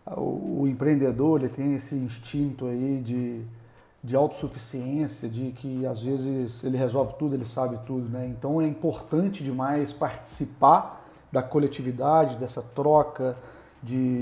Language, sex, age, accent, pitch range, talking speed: Portuguese, male, 40-59, Brazilian, 130-155 Hz, 130 wpm